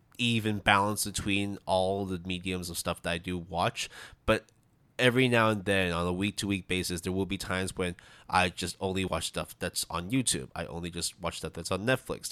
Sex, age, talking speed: male, 20-39, 205 wpm